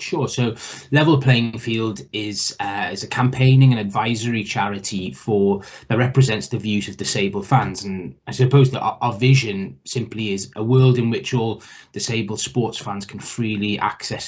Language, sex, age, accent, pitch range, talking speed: English, male, 20-39, British, 110-130 Hz, 170 wpm